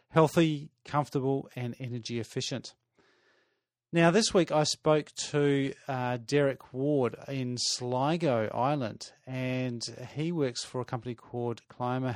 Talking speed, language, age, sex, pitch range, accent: 125 wpm, English, 40-59, male, 125-155 Hz, Australian